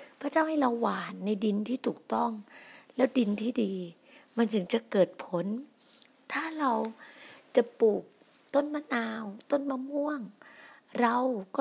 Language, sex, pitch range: Thai, female, 220-285 Hz